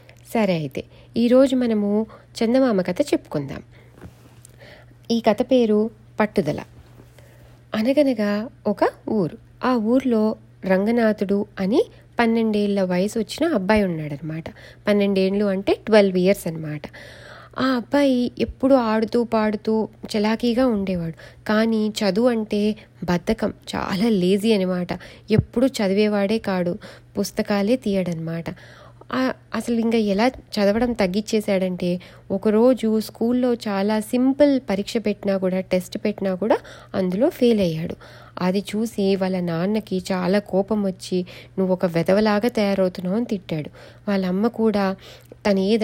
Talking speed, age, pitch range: 105 wpm, 30-49, 185-225 Hz